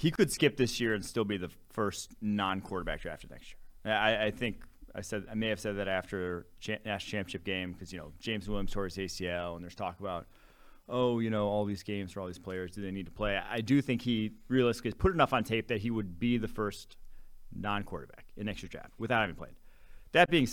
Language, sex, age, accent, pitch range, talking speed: English, male, 30-49, American, 95-120 Hz, 230 wpm